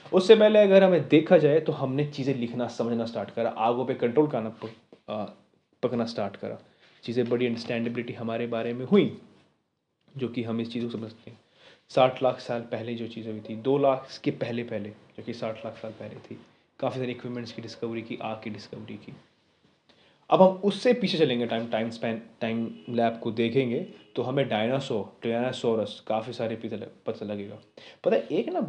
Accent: native